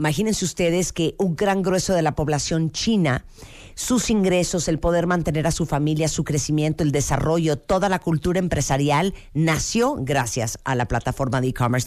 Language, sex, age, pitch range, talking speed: Spanish, female, 50-69, 140-180 Hz, 165 wpm